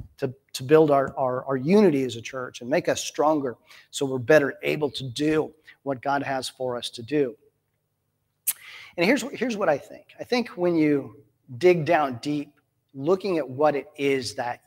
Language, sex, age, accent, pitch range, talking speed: English, male, 40-59, American, 135-160 Hz, 185 wpm